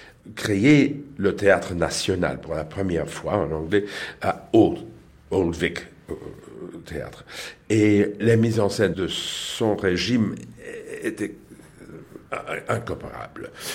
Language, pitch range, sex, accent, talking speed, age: French, 85-140 Hz, male, French, 110 wpm, 60-79